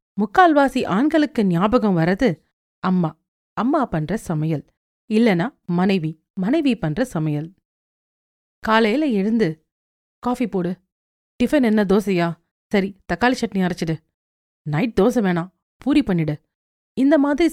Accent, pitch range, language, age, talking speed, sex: native, 165-230 Hz, Tamil, 40-59, 105 wpm, female